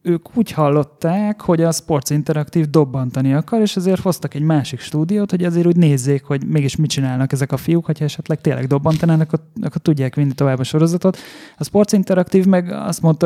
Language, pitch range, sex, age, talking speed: Hungarian, 140-165 Hz, male, 20-39, 195 wpm